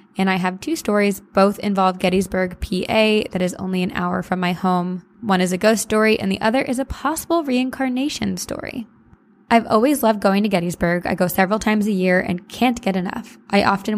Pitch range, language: 180-210 Hz, English